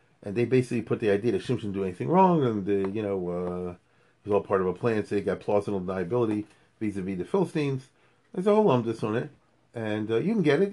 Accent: American